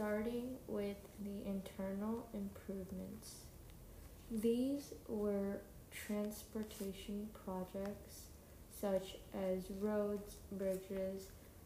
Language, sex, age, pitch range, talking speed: English, female, 20-39, 185-210 Hz, 65 wpm